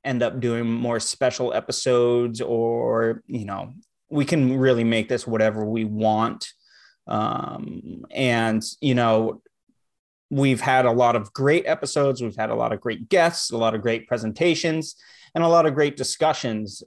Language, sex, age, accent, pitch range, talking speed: English, male, 30-49, American, 120-155 Hz, 165 wpm